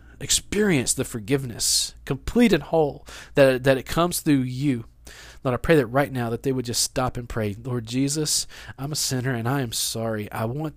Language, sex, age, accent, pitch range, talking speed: English, male, 40-59, American, 110-150 Hz, 200 wpm